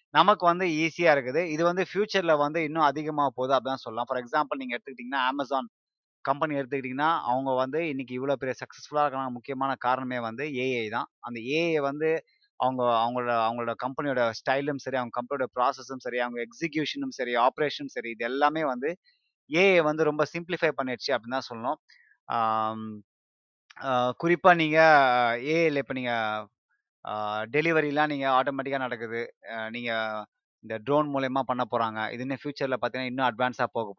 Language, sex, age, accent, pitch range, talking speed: Tamil, male, 20-39, native, 120-150 Hz, 145 wpm